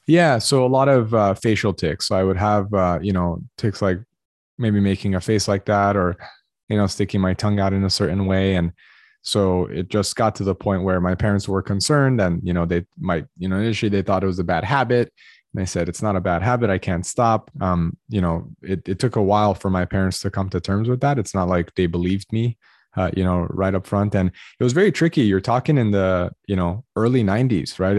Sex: male